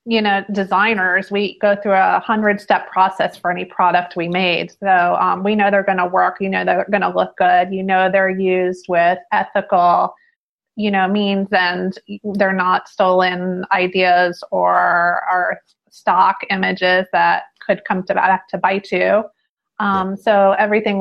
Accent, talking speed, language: American, 165 wpm, English